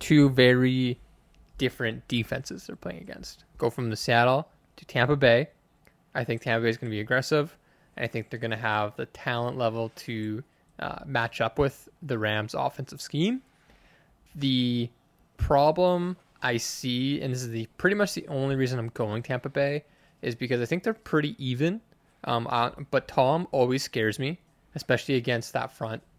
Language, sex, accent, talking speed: English, male, American, 175 wpm